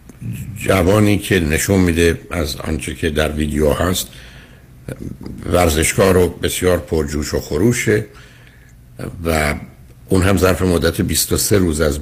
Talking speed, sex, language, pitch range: 120 wpm, male, Persian, 75-100 Hz